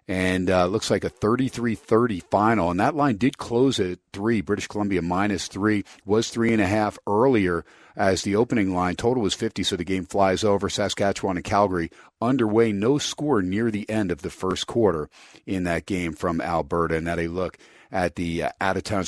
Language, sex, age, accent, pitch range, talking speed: English, male, 40-59, American, 85-105 Hz, 195 wpm